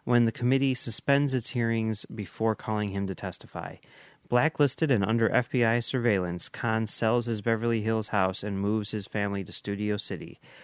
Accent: American